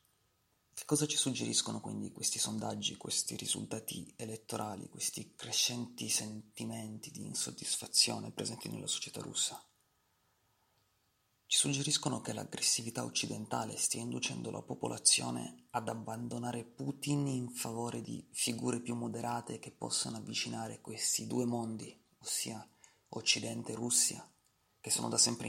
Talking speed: 120 wpm